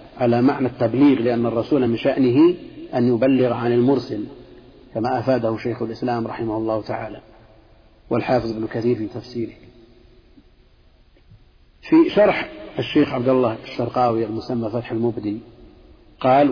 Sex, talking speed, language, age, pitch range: male, 120 wpm, Arabic, 50-69, 115-130 Hz